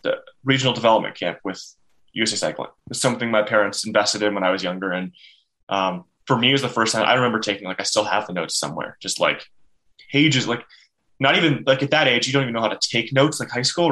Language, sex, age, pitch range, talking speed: English, male, 20-39, 105-130 Hz, 250 wpm